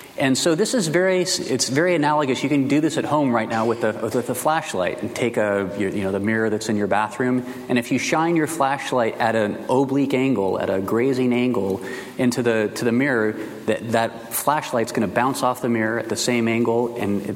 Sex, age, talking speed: male, 30-49, 220 wpm